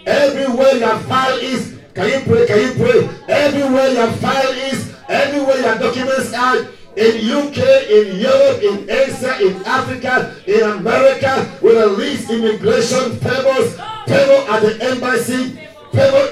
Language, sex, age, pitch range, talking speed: English, male, 50-69, 220-270 Hz, 145 wpm